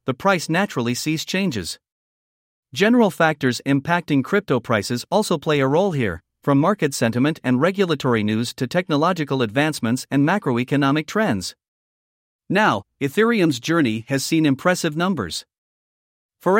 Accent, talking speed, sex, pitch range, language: American, 125 wpm, male, 130-180 Hz, English